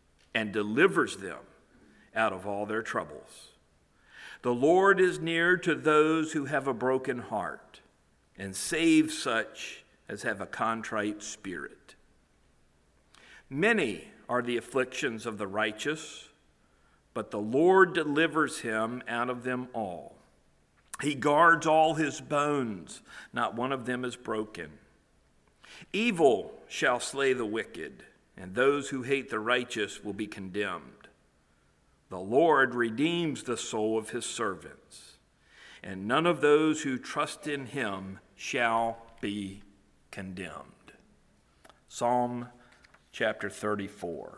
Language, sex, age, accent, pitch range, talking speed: English, male, 50-69, American, 110-145 Hz, 120 wpm